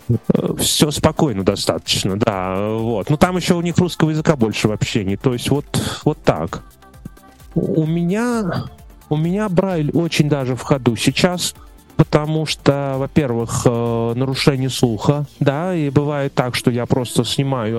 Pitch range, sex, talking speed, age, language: 125-165 Hz, male, 145 wpm, 30-49, Russian